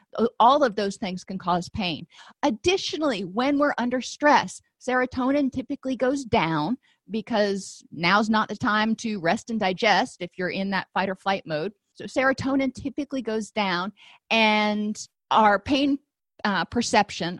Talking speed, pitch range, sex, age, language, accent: 150 wpm, 185-240 Hz, female, 40-59, English, American